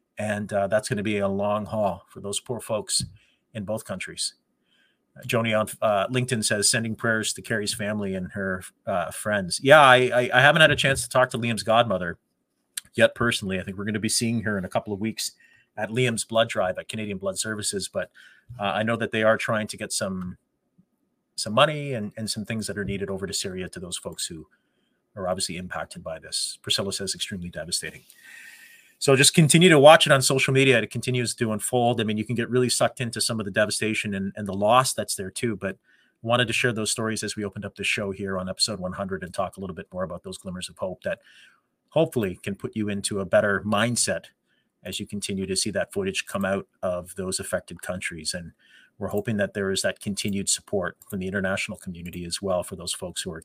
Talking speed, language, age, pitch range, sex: 230 wpm, English, 30-49, 100-120 Hz, male